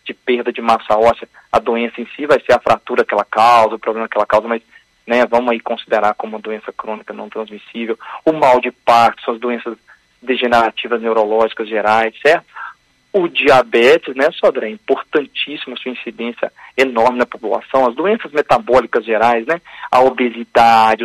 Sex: male